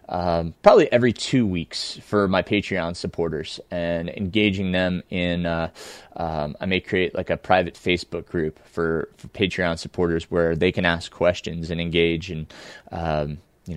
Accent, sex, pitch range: American, male, 85-105 Hz